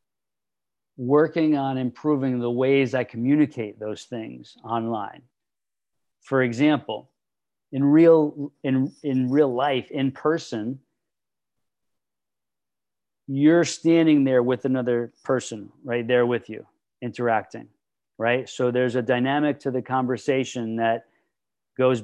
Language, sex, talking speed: English, male, 110 wpm